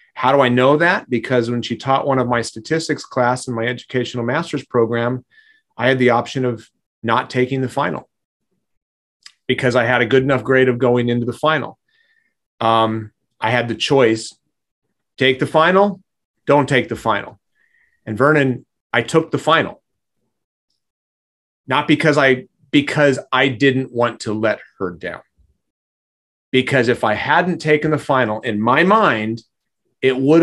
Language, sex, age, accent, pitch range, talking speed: English, male, 30-49, American, 120-150 Hz, 160 wpm